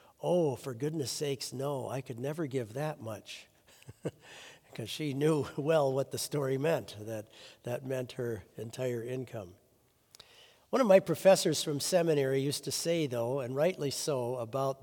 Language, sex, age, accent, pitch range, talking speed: English, male, 60-79, American, 125-160 Hz, 160 wpm